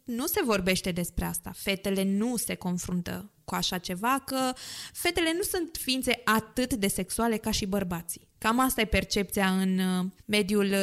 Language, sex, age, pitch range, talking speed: Romanian, female, 20-39, 205-265 Hz, 160 wpm